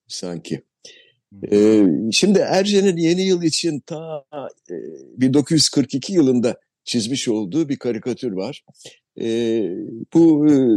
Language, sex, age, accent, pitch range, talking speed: Turkish, male, 60-79, native, 110-150 Hz, 105 wpm